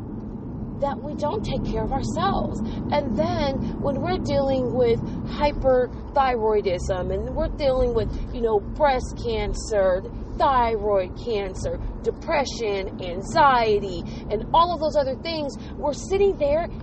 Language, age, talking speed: English, 30-49, 125 wpm